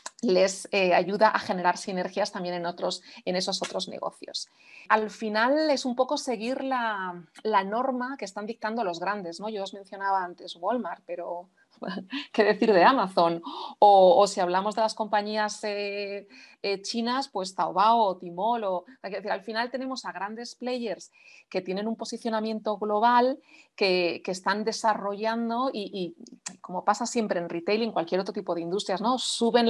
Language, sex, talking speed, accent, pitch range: English, female, 160 wpm, Spanish, 195-245 Hz